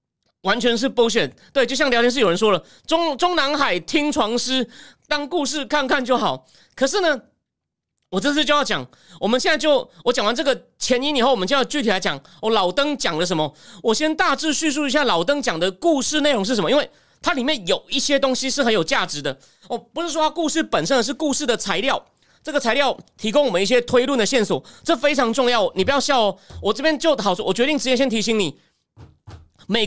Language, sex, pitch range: Chinese, male, 225-300 Hz